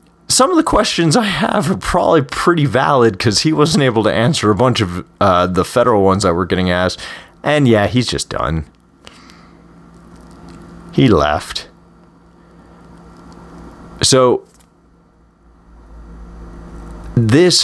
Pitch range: 90-130 Hz